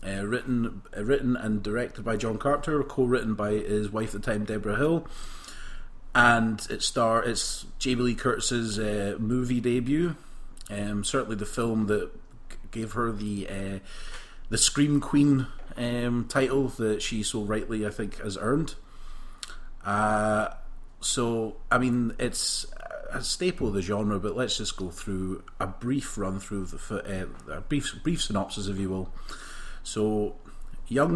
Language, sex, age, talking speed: English, male, 30-49, 155 wpm